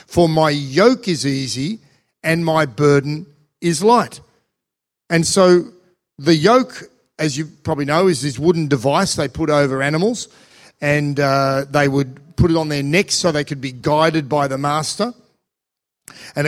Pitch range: 140-175 Hz